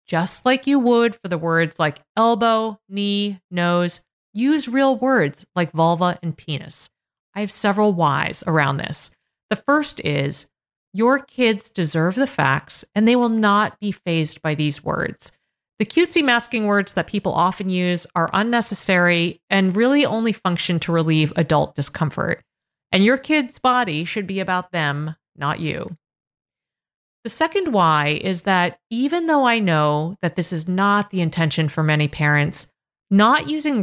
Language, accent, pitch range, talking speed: English, American, 160-215 Hz, 160 wpm